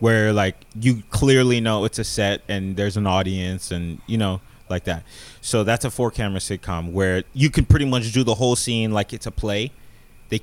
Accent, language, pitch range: American, English, 100-125 Hz